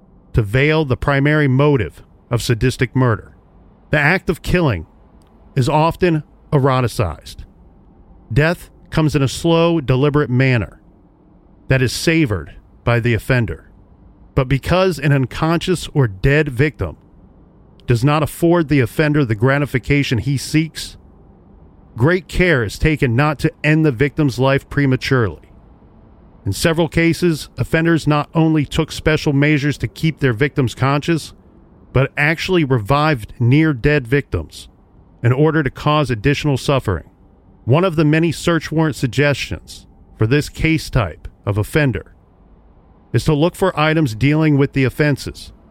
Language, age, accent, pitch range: English, 40-59, American, 100-155 Hz